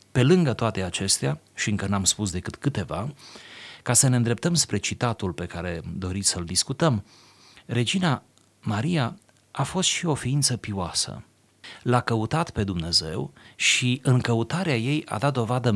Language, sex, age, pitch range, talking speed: Romanian, male, 30-49, 95-125 Hz, 150 wpm